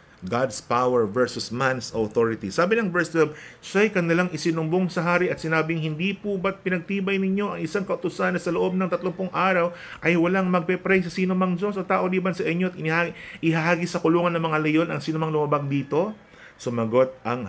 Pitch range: 125-185 Hz